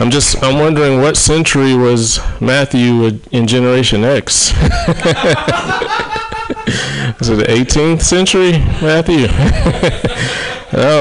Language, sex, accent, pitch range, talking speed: English, male, American, 110-140 Hz, 100 wpm